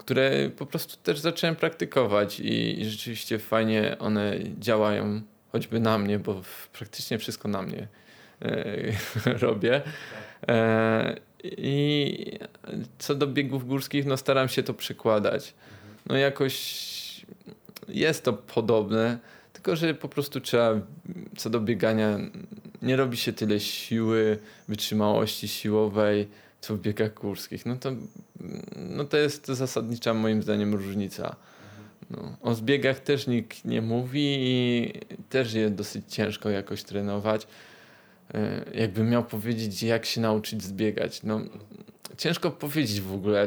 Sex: male